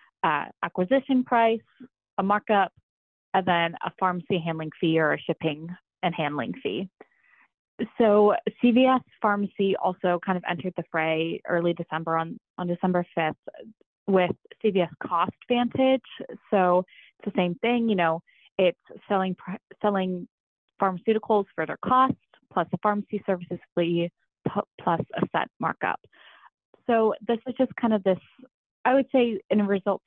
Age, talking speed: 20-39, 150 wpm